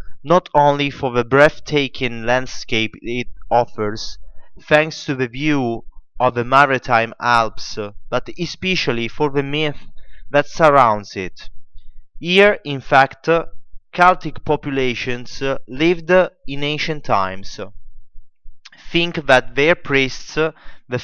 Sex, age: male, 30-49